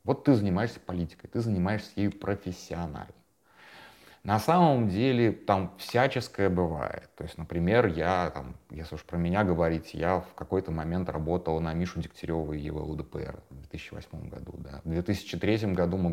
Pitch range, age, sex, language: 80-100 Hz, 30-49, male, Russian